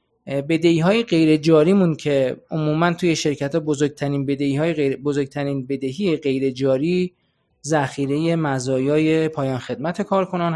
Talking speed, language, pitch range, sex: 110 wpm, Persian, 140-170 Hz, male